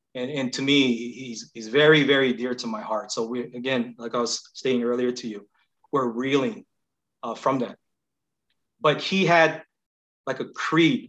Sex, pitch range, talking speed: male, 120-140 Hz, 180 wpm